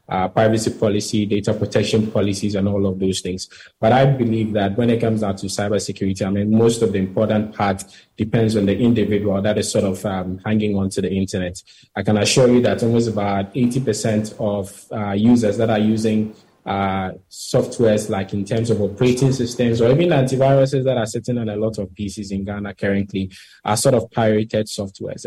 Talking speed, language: 195 wpm, English